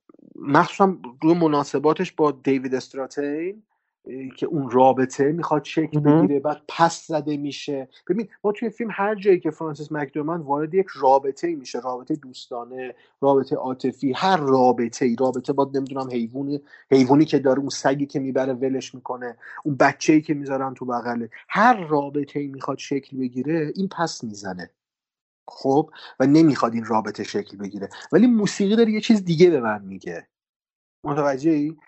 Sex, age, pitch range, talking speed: male, 30-49, 130-165 Hz, 150 wpm